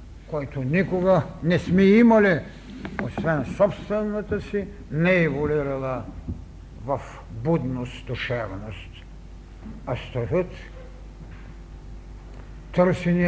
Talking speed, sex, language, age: 70 wpm, male, Bulgarian, 60-79